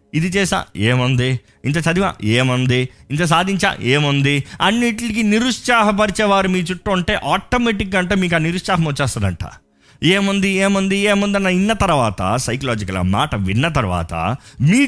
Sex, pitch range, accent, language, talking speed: male, 115-180 Hz, native, Telugu, 125 wpm